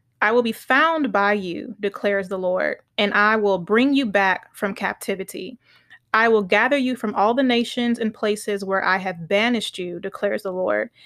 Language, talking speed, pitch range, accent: English, 190 wpm, 195-225 Hz, American